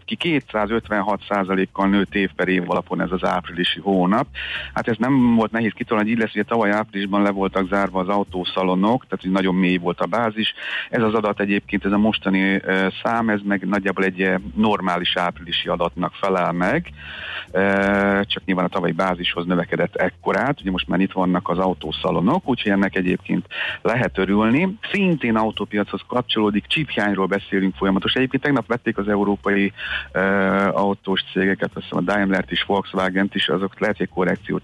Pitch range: 95-110 Hz